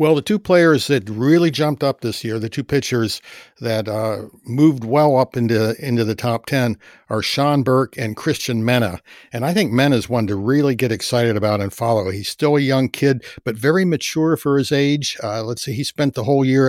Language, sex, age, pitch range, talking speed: English, male, 60-79, 115-145 Hz, 215 wpm